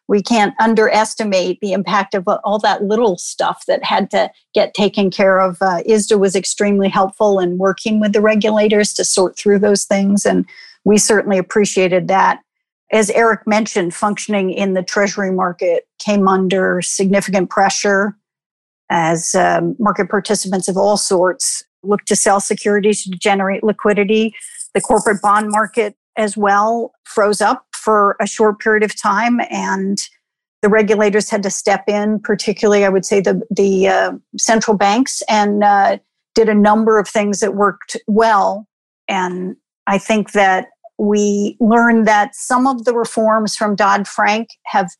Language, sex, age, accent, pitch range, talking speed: English, female, 50-69, American, 195-220 Hz, 155 wpm